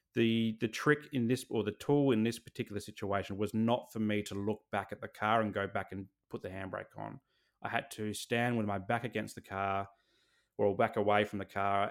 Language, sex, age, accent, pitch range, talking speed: English, male, 20-39, Australian, 105-120 Hz, 230 wpm